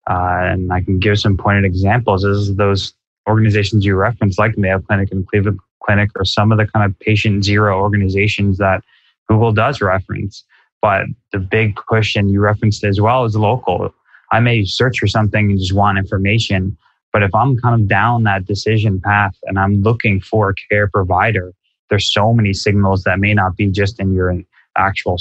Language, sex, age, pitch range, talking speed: English, male, 20-39, 95-110 Hz, 190 wpm